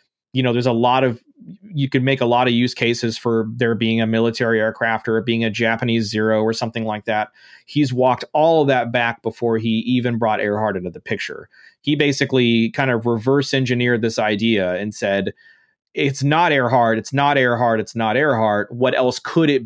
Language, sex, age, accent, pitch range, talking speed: English, male, 30-49, American, 115-140 Hz, 205 wpm